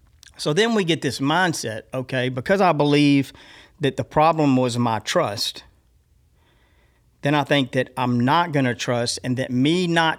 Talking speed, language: 170 wpm, English